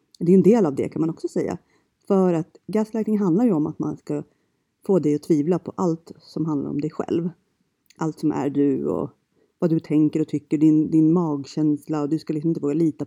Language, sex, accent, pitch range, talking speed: Swedish, female, native, 160-225 Hz, 230 wpm